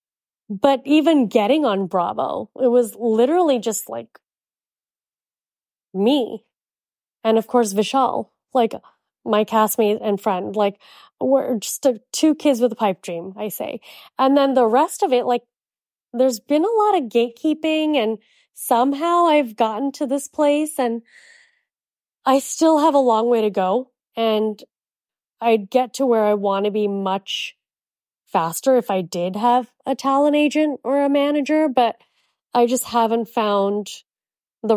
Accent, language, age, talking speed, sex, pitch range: American, English, 20-39, 155 wpm, female, 210-265 Hz